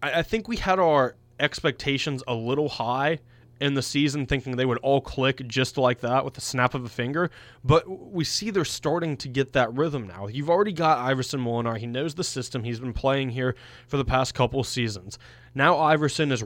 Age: 20-39